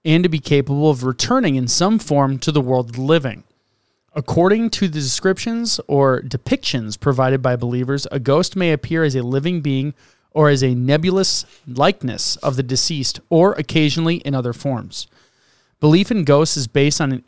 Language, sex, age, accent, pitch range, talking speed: English, male, 30-49, American, 130-160 Hz, 180 wpm